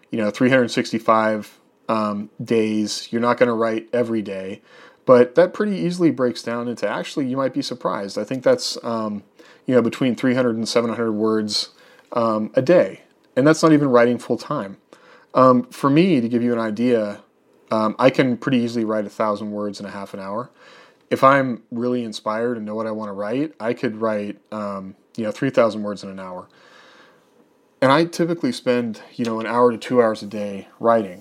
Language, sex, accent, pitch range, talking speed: English, male, American, 110-135 Hz, 195 wpm